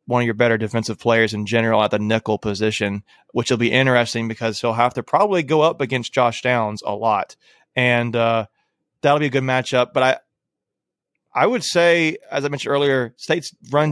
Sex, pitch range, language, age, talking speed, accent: male, 110-135 Hz, English, 30-49, 200 wpm, American